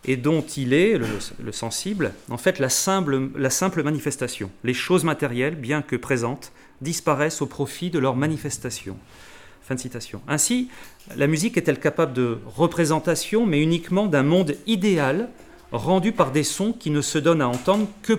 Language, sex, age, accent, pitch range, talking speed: French, male, 40-59, French, 135-180 Hz, 170 wpm